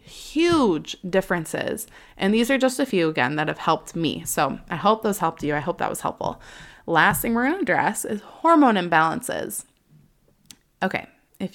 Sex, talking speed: female, 180 wpm